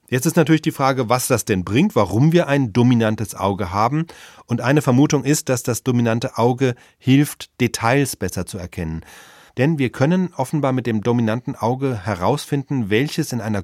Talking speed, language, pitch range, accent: 175 wpm, German, 110-135 Hz, German